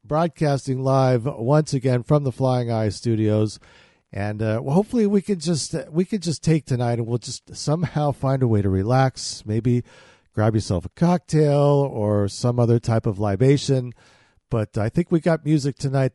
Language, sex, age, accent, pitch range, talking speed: English, male, 50-69, American, 110-150 Hz, 180 wpm